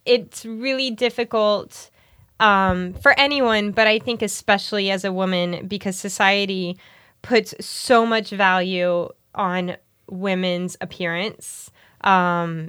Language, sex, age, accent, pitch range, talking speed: English, female, 20-39, American, 180-215 Hz, 110 wpm